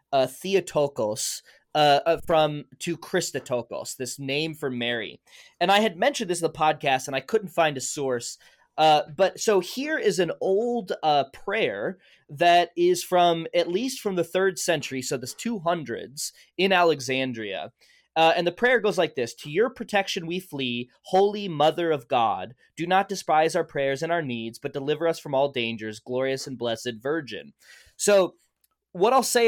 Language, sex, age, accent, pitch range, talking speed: English, male, 20-39, American, 140-190 Hz, 175 wpm